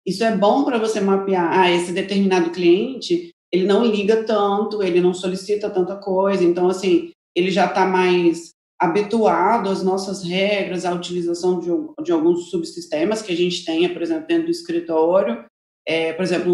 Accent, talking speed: Brazilian, 170 wpm